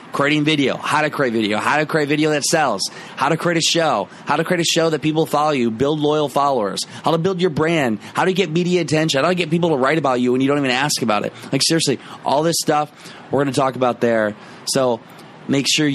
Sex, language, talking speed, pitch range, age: male, English, 255 wpm, 115-160 Hz, 20-39